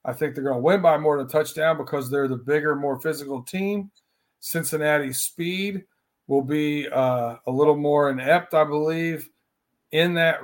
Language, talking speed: English, 180 wpm